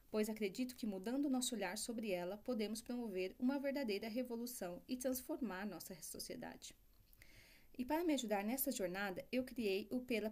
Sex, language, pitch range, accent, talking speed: female, Portuguese, 200-260 Hz, Brazilian, 165 wpm